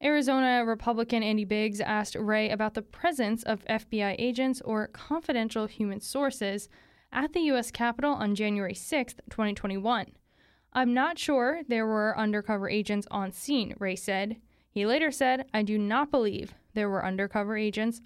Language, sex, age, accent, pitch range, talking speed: English, female, 10-29, American, 210-255 Hz, 155 wpm